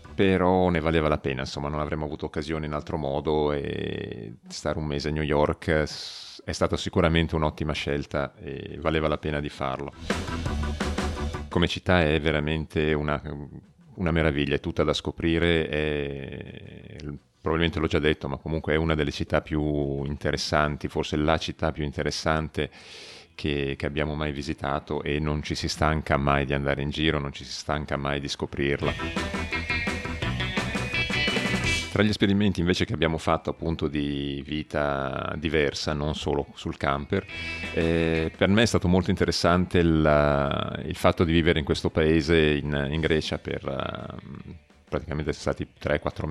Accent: native